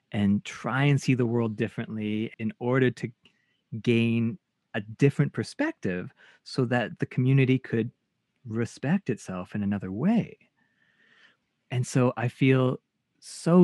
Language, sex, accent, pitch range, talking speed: English, male, American, 110-140 Hz, 130 wpm